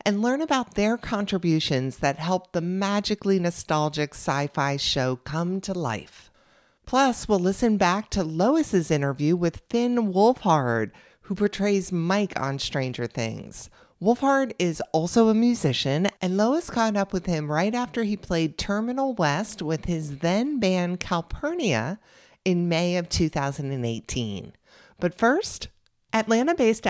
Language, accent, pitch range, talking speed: English, American, 150-215 Hz, 130 wpm